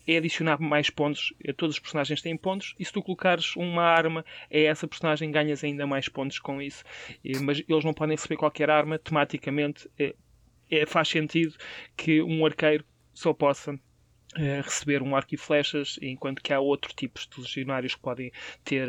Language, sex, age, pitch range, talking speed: Portuguese, male, 20-39, 140-160 Hz, 185 wpm